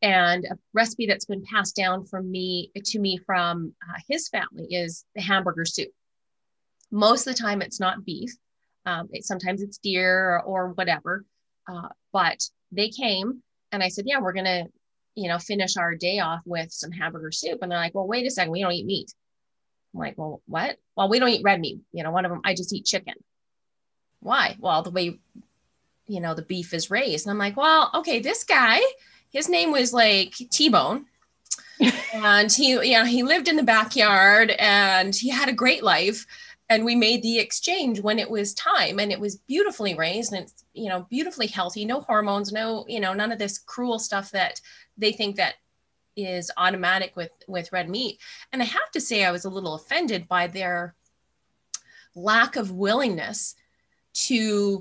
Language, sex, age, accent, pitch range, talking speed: English, female, 30-49, American, 185-235 Hz, 195 wpm